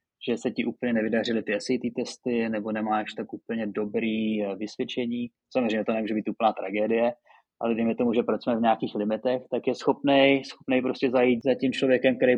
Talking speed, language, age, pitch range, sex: 190 wpm, Czech, 20-39, 115-125 Hz, male